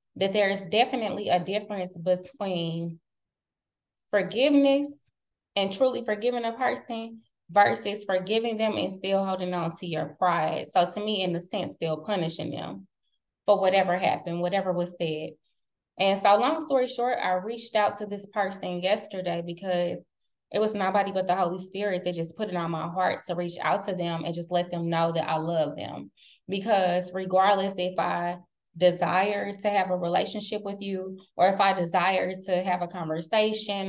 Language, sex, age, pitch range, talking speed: English, female, 20-39, 175-205 Hz, 175 wpm